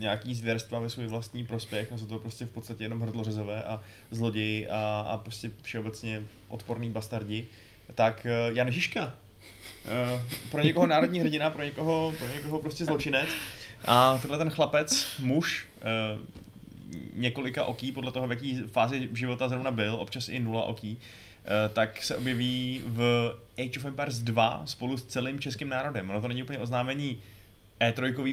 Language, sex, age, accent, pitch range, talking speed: Czech, male, 20-39, native, 110-130 Hz, 155 wpm